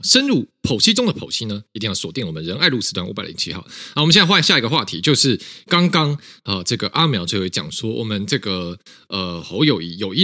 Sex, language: male, Chinese